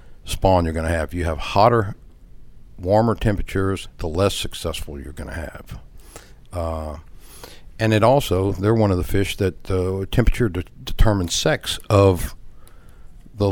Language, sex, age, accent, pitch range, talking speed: English, male, 60-79, American, 85-100 Hz, 155 wpm